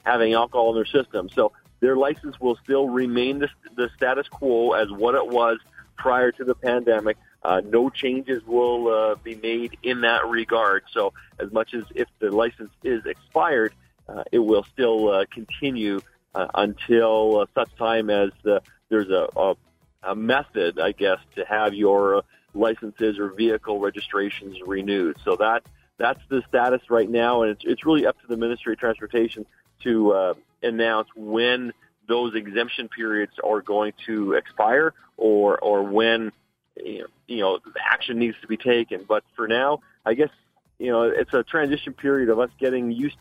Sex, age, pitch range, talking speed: male, 40-59, 110-130 Hz, 175 wpm